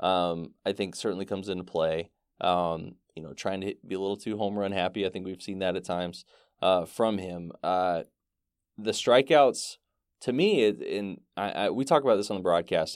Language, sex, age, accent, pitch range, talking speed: English, male, 20-39, American, 90-110 Hz, 205 wpm